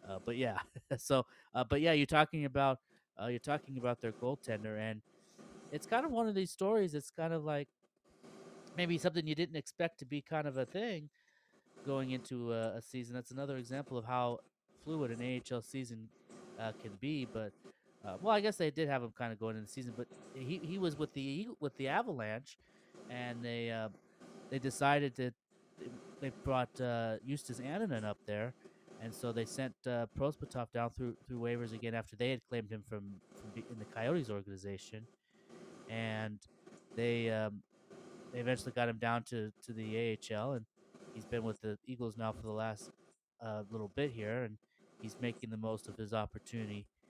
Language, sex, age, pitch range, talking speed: English, male, 30-49, 110-140 Hz, 190 wpm